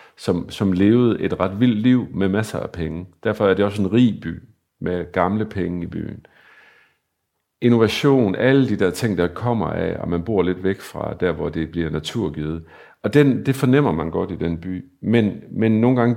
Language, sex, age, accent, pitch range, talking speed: Danish, male, 50-69, native, 90-115 Hz, 205 wpm